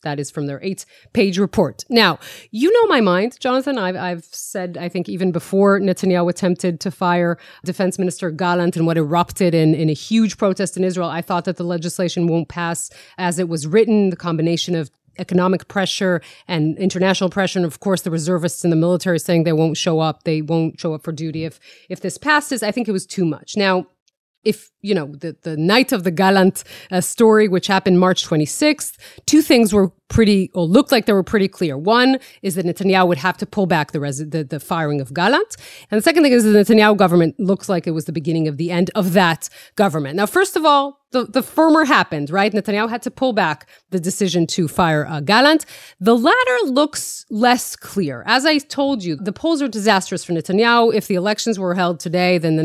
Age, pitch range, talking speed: 30-49, 170-215 Hz, 220 wpm